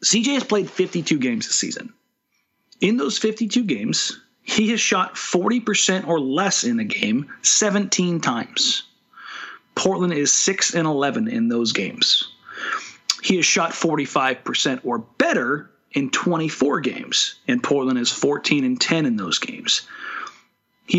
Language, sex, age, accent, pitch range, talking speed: English, male, 40-59, American, 150-235 Hz, 130 wpm